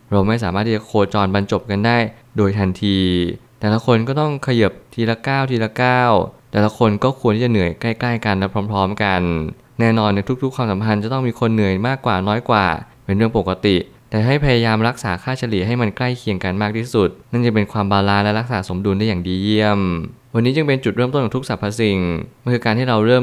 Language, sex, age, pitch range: Thai, male, 20-39, 100-120 Hz